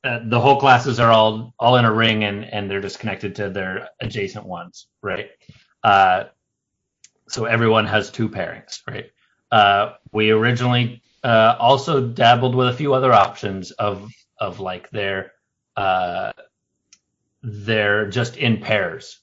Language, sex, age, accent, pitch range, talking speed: English, male, 30-49, American, 105-135 Hz, 145 wpm